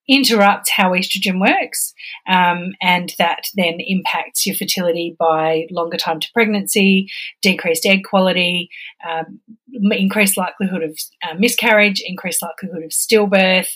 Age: 30-49